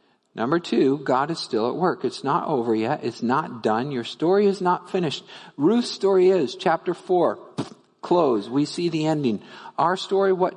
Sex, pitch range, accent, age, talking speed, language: male, 130-180 Hz, American, 50-69, 180 wpm, English